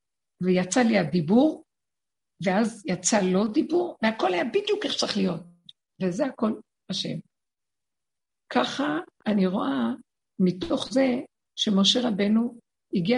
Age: 50-69